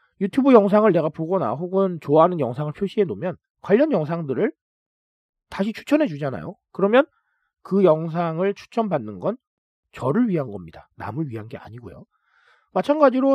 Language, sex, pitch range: Korean, male, 140-225 Hz